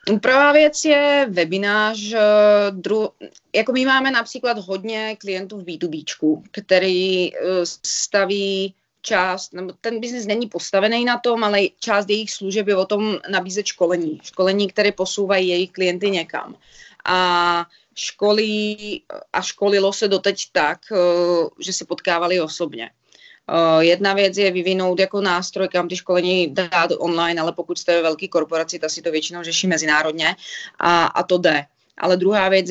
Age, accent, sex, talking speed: 30-49, native, female, 145 wpm